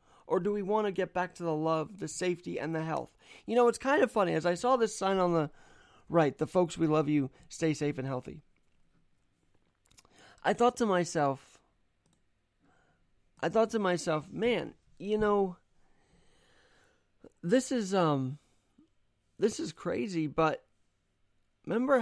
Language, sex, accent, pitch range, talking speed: English, male, American, 140-190 Hz, 155 wpm